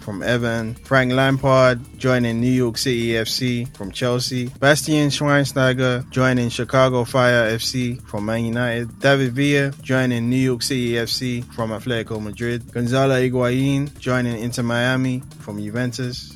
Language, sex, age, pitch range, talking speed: English, male, 10-29, 115-135 Hz, 135 wpm